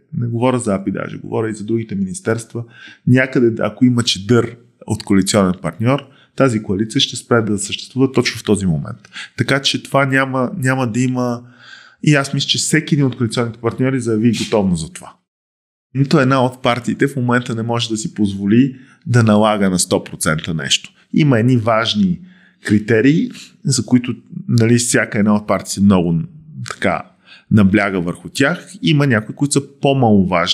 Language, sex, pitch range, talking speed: Bulgarian, male, 110-145 Hz, 165 wpm